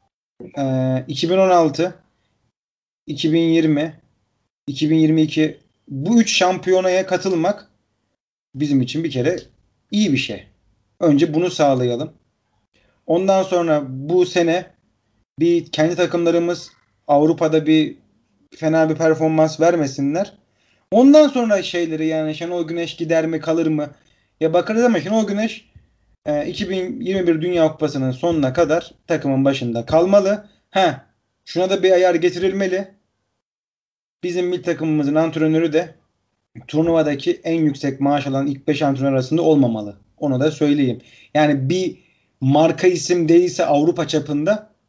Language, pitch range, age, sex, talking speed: Turkish, 135-175 Hz, 40-59, male, 115 wpm